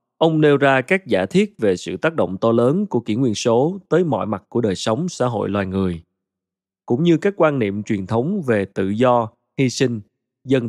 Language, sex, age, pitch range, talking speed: Vietnamese, male, 20-39, 105-150 Hz, 220 wpm